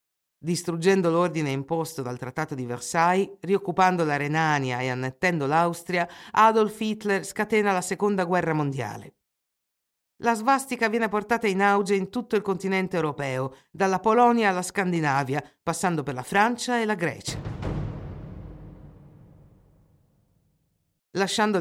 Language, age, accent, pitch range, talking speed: Italian, 50-69, native, 160-205 Hz, 120 wpm